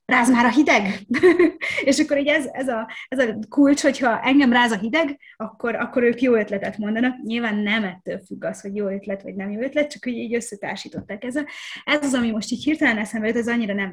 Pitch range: 205-250 Hz